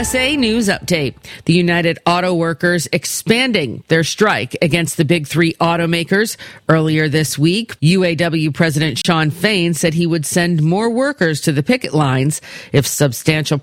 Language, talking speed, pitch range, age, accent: English, 150 wpm, 150-185 Hz, 40-59, American